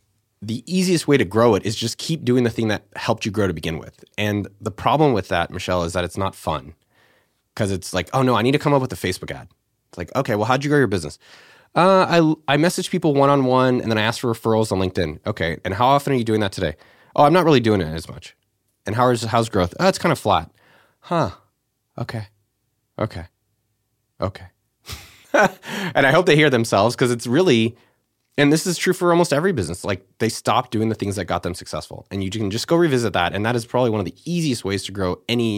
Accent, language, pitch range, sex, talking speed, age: American, English, 95-130 Hz, male, 245 wpm, 30-49